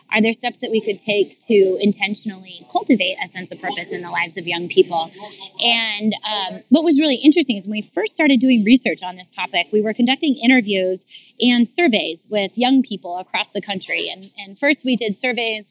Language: English